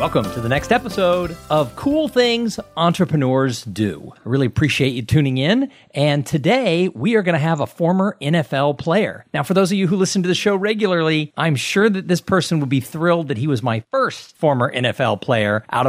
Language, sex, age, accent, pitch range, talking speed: English, male, 40-59, American, 125-180 Hz, 210 wpm